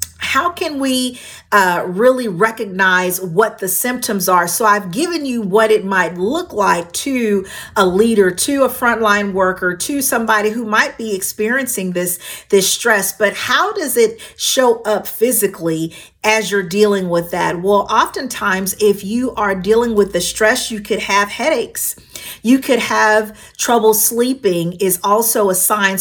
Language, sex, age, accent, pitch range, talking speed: English, female, 40-59, American, 185-235 Hz, 160 wpm